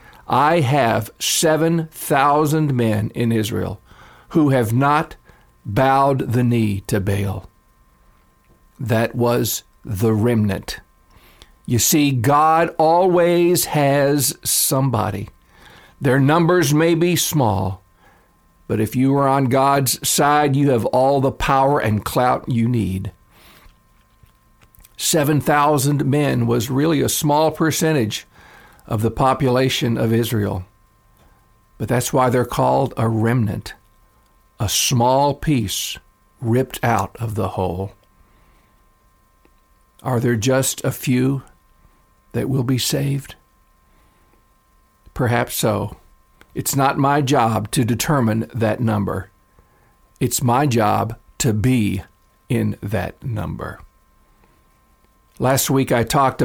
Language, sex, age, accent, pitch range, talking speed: English, male, 50-69, American, 105-140 Hz, 110 wpm